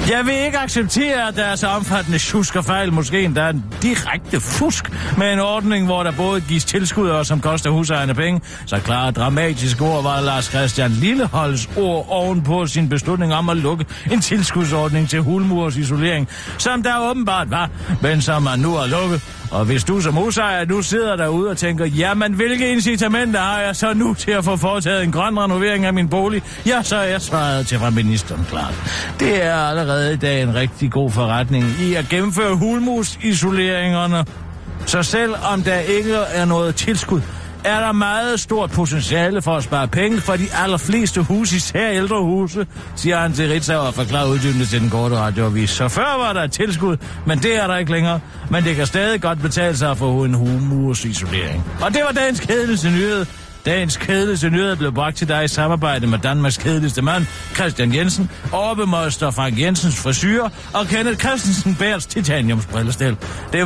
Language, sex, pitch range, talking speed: Danish, male, 135-195 Hz, 185 wpm